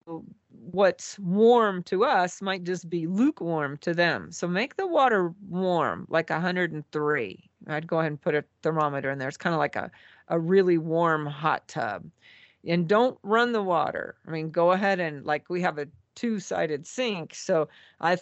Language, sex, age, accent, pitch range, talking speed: English, female, 40-59, American, 155-185 Hz, 180 wpm